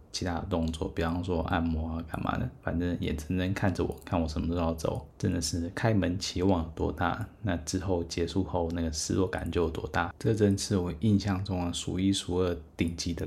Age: 20-39